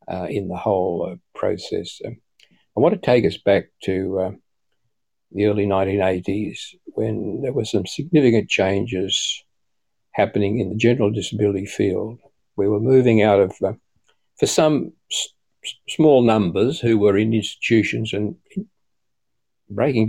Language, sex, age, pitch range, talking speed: English, male, 60-79, 100-110 Hz, 145 wpm